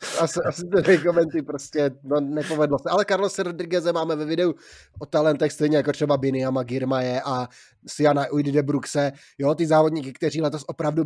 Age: 20-39